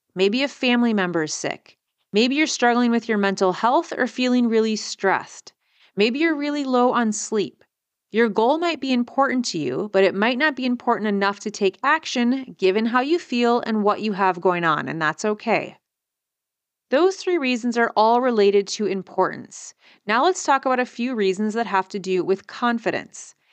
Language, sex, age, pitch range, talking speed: English, female, 30-49, 195-245 Hz, 190 wpm